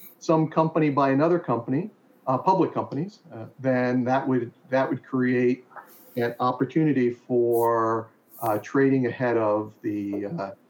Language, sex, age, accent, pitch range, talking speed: English, male, 50-69, American, 120-150 Hz, 135 wpm